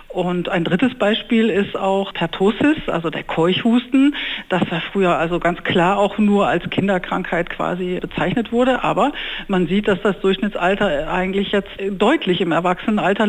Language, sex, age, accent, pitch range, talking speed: German, female, 60-79, German, 180-215 Hz, 155 wpm